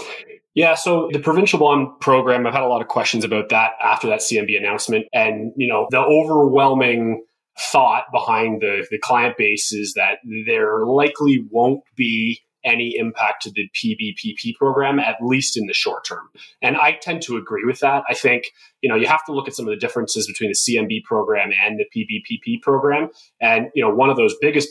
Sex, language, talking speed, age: male, English, 200 wpm, 20-39